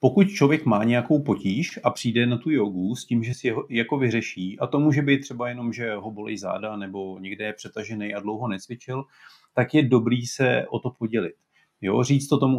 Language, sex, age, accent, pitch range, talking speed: Czech, male, 40-59, native, 115-130 Hz, 210 wpm